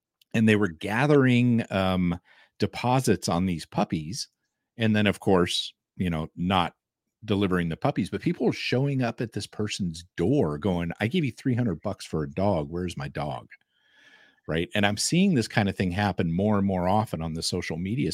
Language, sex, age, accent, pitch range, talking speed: English, male, 50-69, American, 95-125 Hz, 190 wpm